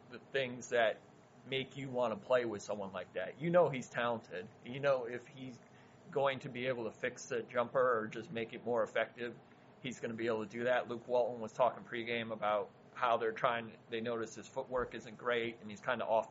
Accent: American